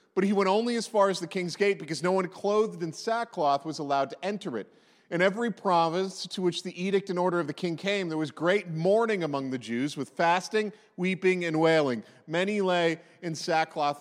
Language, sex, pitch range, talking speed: English, male, 165-205 Hz, 215 wpm